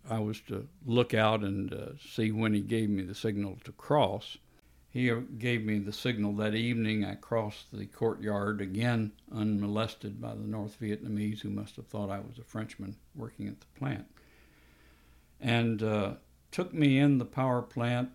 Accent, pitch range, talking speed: American, 100-120 Hz, 175 wpm